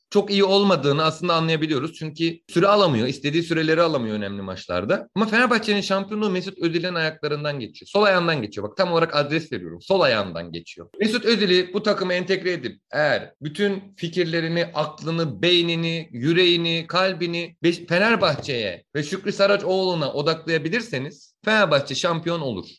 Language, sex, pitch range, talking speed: Turkish, male, 150-195 Hz, 140 wpm